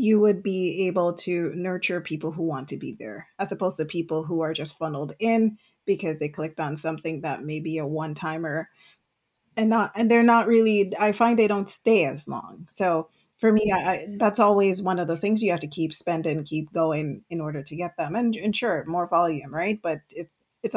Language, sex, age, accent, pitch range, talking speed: English, female, 30-49, American, 160-210 Hz, 215 wpm